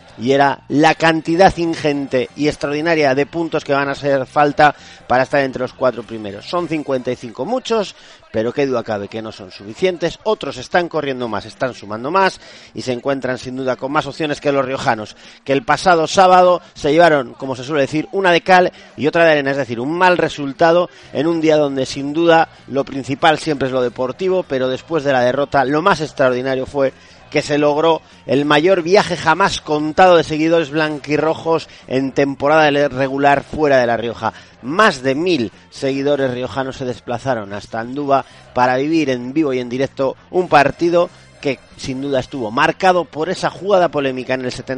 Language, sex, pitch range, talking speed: Spanish, male, 125-160 Hz, 190 wpm